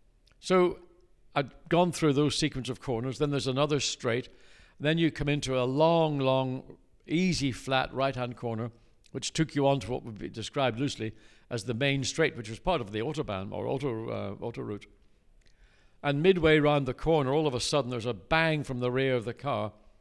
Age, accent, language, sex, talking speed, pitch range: 60-79, British, English, male, 195 wpm, 115-140 Hz